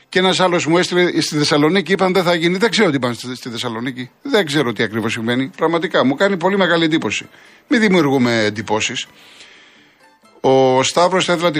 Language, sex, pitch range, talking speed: Greek, male, 130-175 Hz, 185 wpm